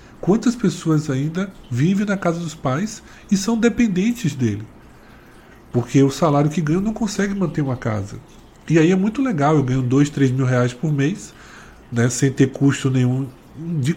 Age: 20-39